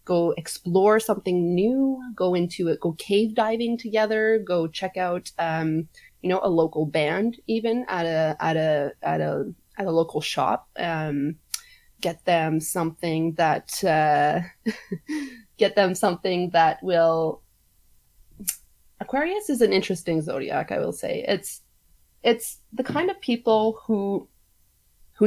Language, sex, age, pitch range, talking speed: English, female, 20-39, 165-230 Hz, 140 wpm